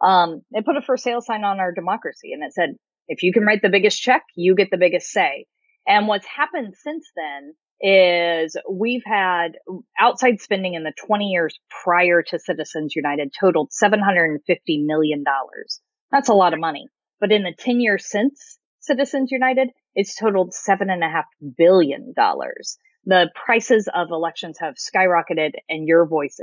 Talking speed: 175 wpm